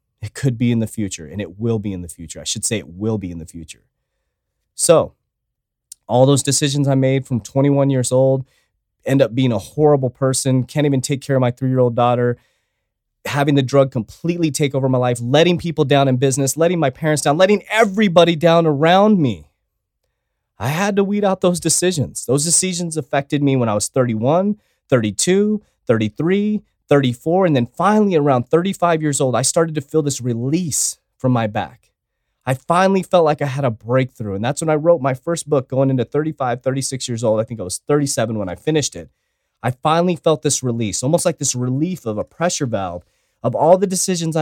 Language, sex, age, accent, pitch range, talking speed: English, male, 30-49, American, 120-160 Hz, 205 wpm